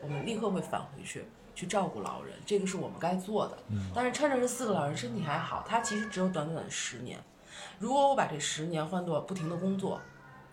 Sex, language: female, Chinese